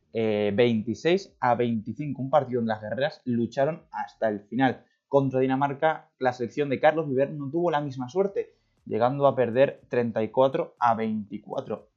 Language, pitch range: Spanish, 115-145 Hz